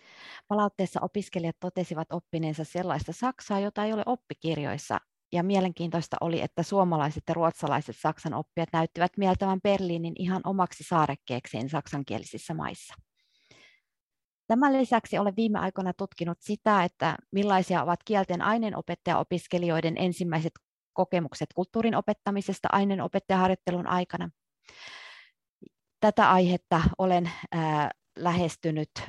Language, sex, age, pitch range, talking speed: Finnish, female, 30-49, 160-190 Hz, 105 wpm